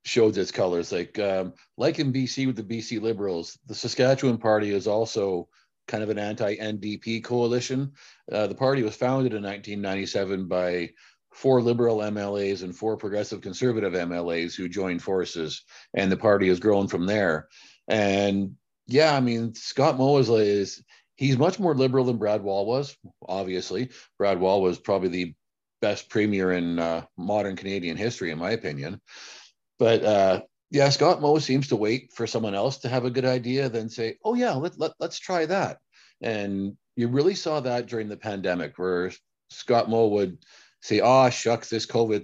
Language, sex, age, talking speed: English, male, 40-59, 175 wpm